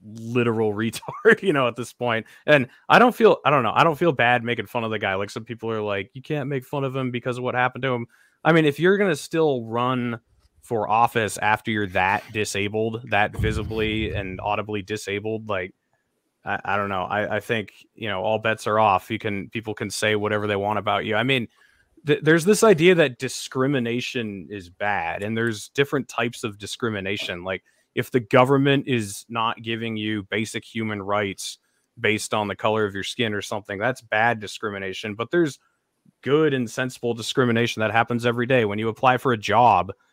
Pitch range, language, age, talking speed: 105-125 Hz, English, 20-39, 205 wpm